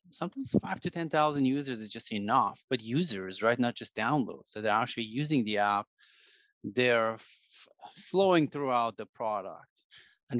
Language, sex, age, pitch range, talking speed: English, male, 30-49, 110-140 Hz, 155 wpm